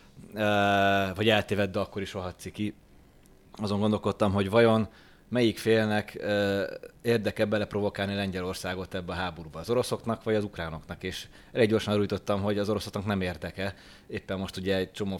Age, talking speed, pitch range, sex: 20-39, 150 wpm, 95-105 Hz, male